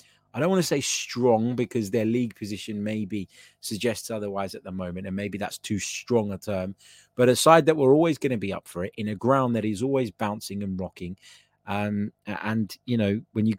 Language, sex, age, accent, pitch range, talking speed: English, male, 20-39, British, 95-125 Hz, 215 wpm